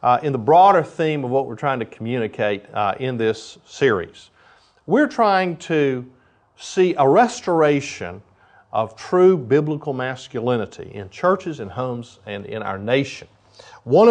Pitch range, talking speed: 130-185 Hz, 145 wpm